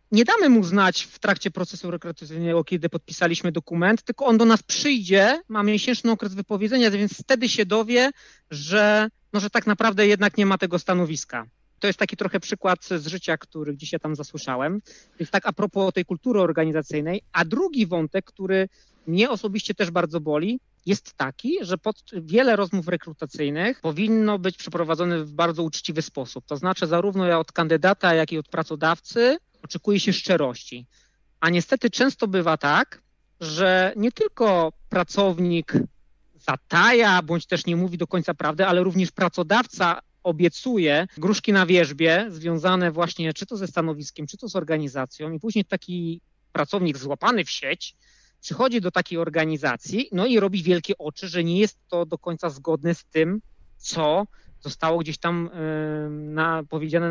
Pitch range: 160-205 Hz